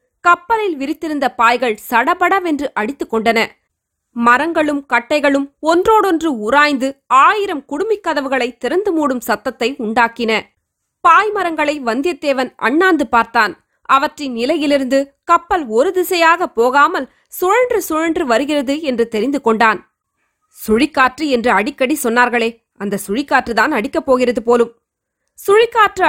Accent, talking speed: native, 95 wpm